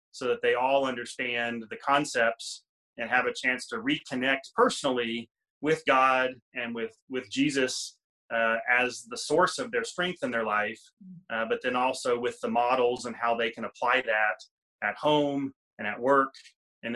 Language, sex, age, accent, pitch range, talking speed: English, male, 30-49, American, 120-150 Hz, 175 wpm